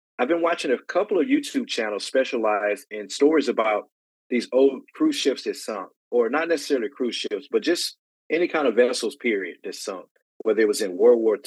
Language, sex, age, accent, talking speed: English, male, 30-49, American, 200 wpm